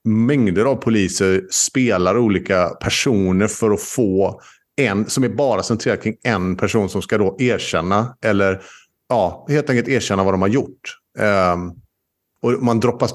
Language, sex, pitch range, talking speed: Swedish, male, 95-120 Hz, 155 wpm